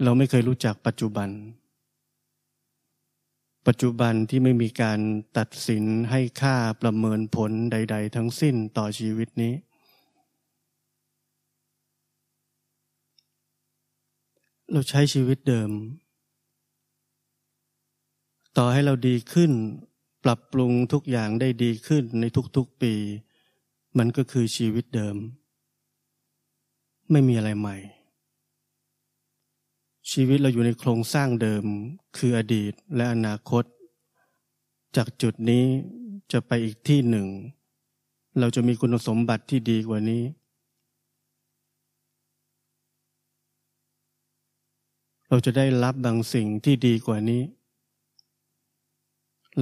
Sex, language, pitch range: male, Thai, 110-130 Hz